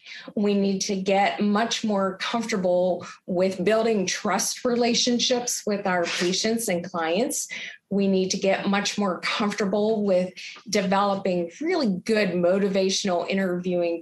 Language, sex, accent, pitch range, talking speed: English, female, American, 180-230 Hz, 125 wpm